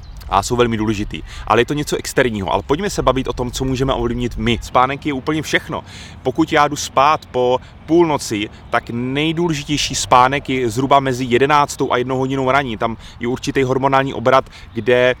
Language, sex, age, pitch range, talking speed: Czech, male, 30-49, 105-140 Hz, 180 wpm